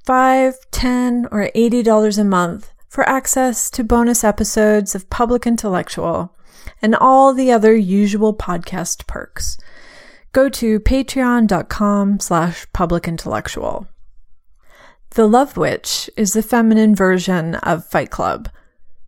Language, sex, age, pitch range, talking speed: English, female, 30-49, 195-250 Hz, 120 wpm